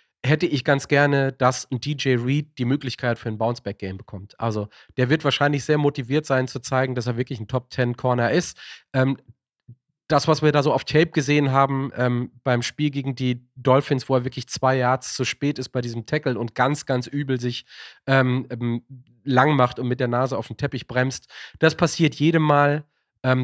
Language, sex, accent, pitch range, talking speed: German, male, German, 120-135 Hz, 200 wpm